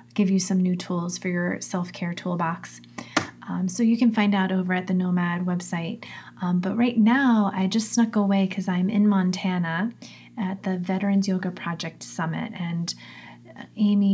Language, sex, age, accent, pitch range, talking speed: English, female, 30-49, American, 175-200 Hz, 170 wpm